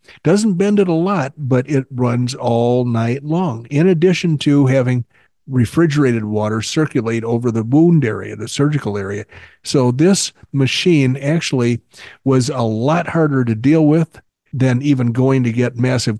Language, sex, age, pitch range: English, male, 50-69, 120-150 Hz